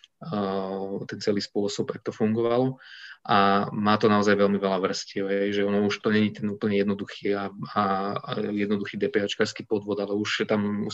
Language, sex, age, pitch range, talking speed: Slovak, male, 20-39, 100-105 Hz, 165 wpm